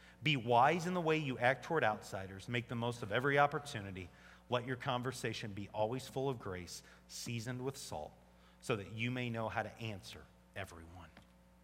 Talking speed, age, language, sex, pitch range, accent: 180 wpm, 40-59, English, male, 95-135 Hz, American